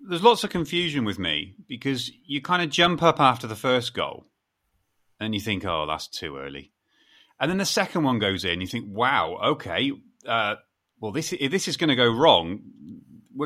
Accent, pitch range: British, 120-185 Hz